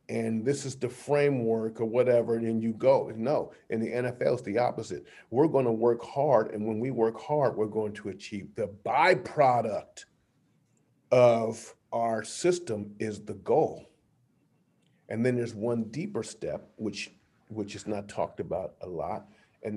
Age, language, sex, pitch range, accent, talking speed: 40-59, English, male, 105-120 Hz, American, 165 wpm